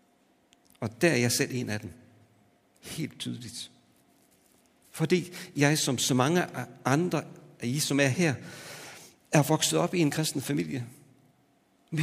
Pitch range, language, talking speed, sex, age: 115-155 Hz, Danish, 150 wpm, male, 60-79